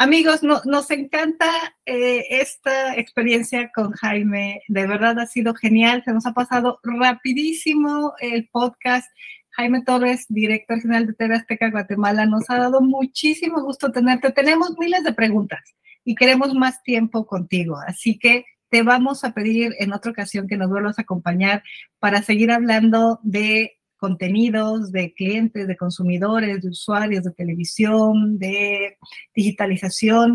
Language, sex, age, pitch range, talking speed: Spanish, female, 40-59, 205-250 Hz, 145 wpm